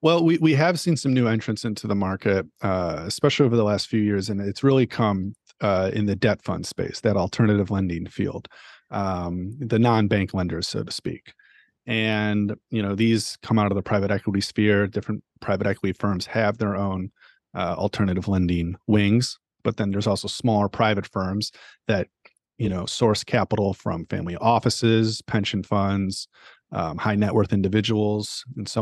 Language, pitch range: English, 100-110 Hz